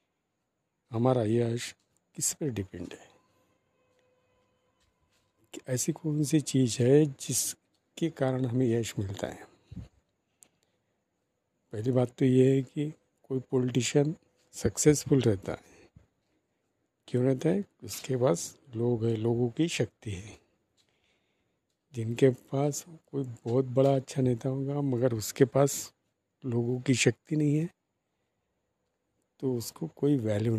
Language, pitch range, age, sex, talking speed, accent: Hindi, 115-145 Hz, 50-69, male, 120 wpm, native